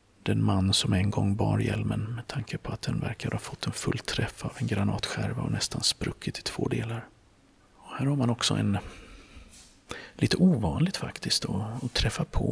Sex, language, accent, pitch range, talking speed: male, Swedish, native, 100-125 Hz, 190 wpm